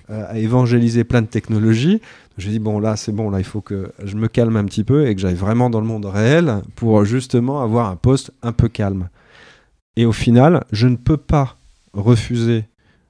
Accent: French